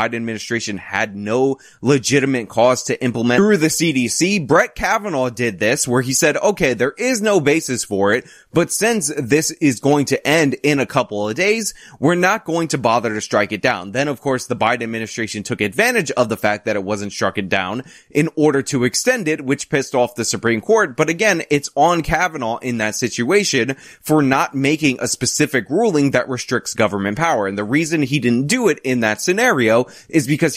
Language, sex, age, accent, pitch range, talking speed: English, male, 20-39, American, 115-155 Hz, 205 wpm